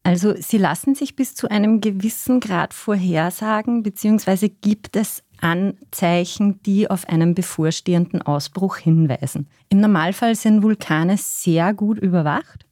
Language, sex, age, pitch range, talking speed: German, female, 30-49, 165-210 Hz, 125 wpm